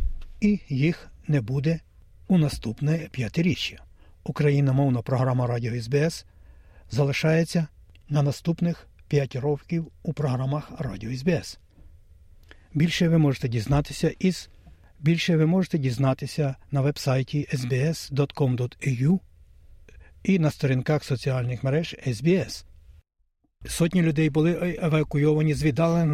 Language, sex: Ukrainian, male